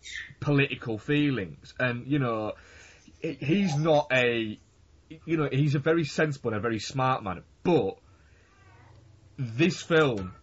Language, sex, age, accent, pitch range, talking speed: English, male, 20-39, British, 120-155 Hz, 125 wpm